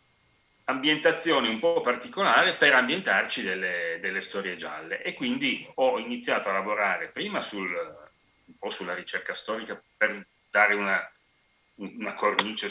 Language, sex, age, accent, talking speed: Italian, male, 30-49, native, 130 wpm